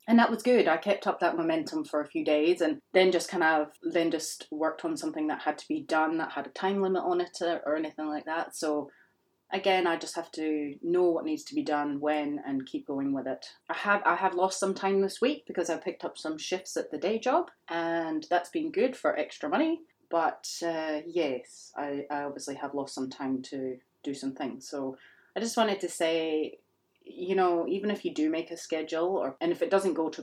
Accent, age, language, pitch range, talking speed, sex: British, 30-49, English, 150-195 Hz, 235 wpm, female